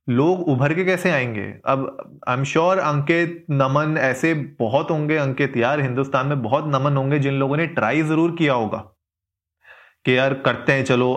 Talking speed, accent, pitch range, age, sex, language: 175 wpm, native, 130-165 Hz, 30-49, male, Hindi